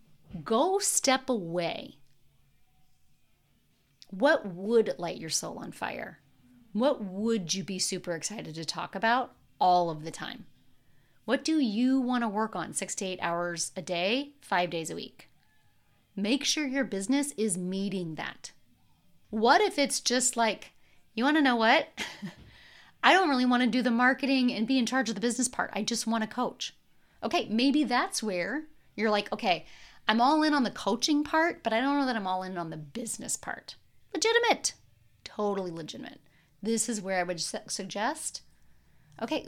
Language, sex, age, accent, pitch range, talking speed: English, female, 30-49, American, 175-255 Hz, 175 wpm